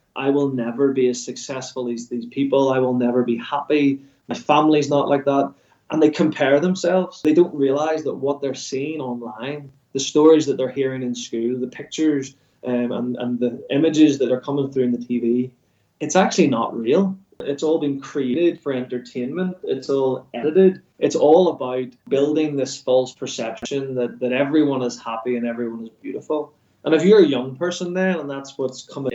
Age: 20-39